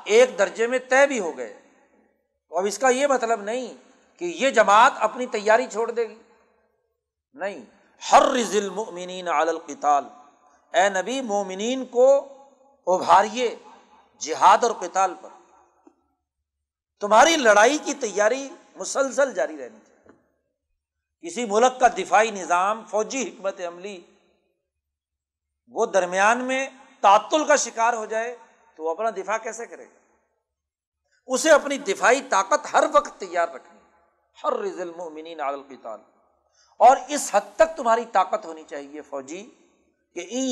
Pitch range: 180-265 Hz